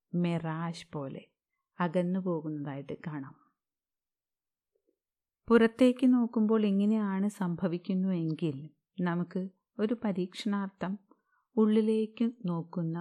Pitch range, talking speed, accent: 165-220 Hz, 70 wpm, native